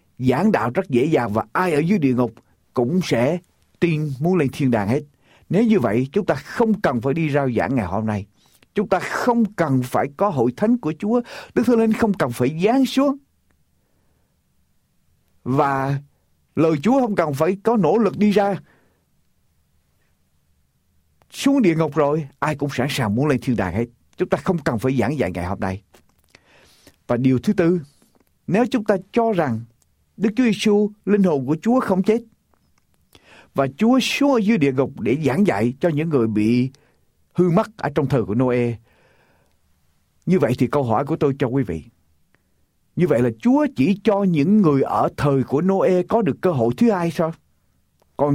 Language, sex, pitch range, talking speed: Vietnamese, male, 125-205 Hz, 190 wpm